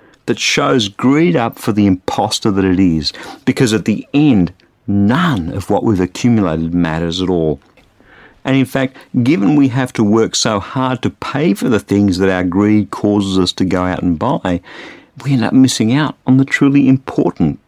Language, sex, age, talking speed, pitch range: English, male, 50-69, 190 wpm, 100-140 Hz